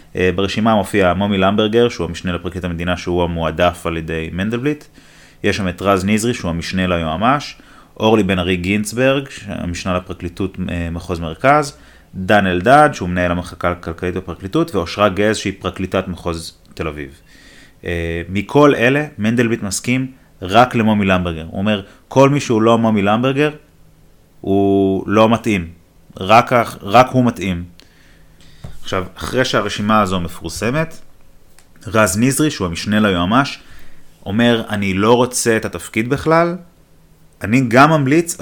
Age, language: 30-49, Hebrew